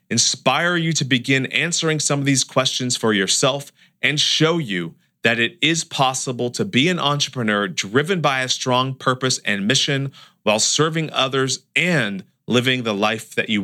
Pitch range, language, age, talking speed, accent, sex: 110-145 Hz, English, 40-59, 165 wpm, American, male